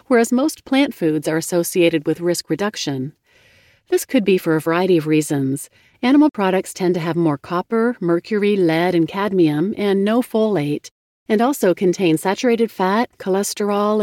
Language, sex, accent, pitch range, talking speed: English, female, American, 165-220 Hz, 160 wpm